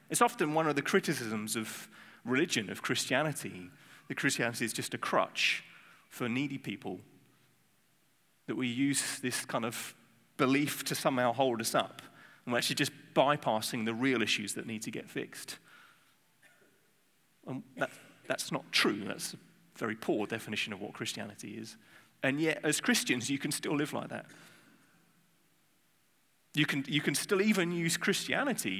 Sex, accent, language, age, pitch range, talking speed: male, British, English, 30-49, 130-175 Hz, 150 wpm